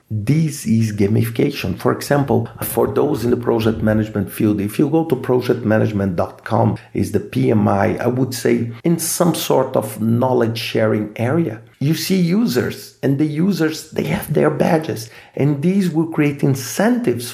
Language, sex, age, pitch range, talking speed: English, male, 50-69, 115-175 Hz, 155 wpm